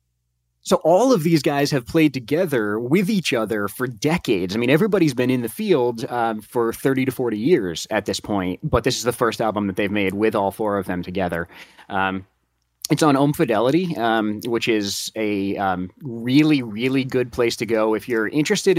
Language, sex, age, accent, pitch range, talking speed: English, male, 30-49, American, 100-135 Hz, 200 wpm